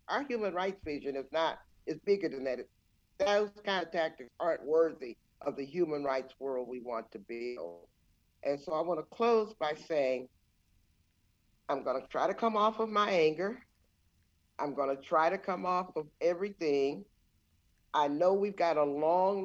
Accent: American